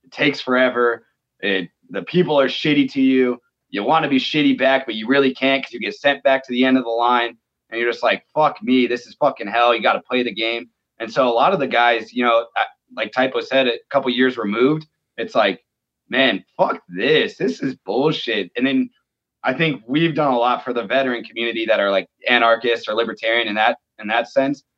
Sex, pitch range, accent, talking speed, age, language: male, 120-155 Hz, American, 225 wpm, 20-39, English